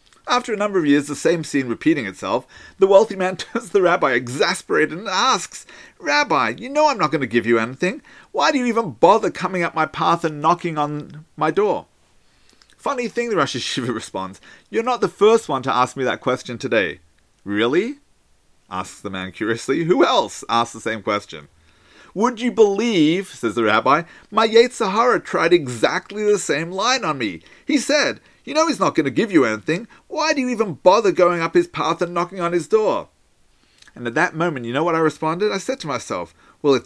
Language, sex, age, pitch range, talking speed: English, male, 40-59, 130-220 Hz, 205 wpm